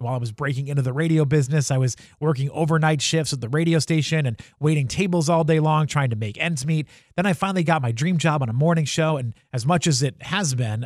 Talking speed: 255 wpm